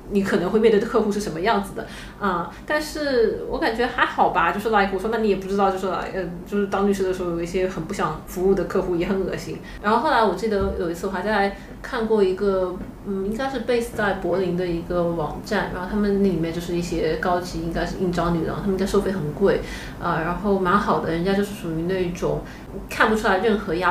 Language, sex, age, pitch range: Chinese, female, 30-49, 170-200 Hz